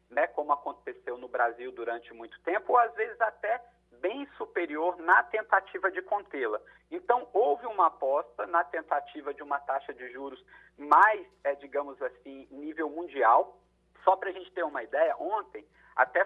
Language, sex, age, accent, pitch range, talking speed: Portuguese, male, 40-59, Brazilian, 165-270 Hz, 160 wpm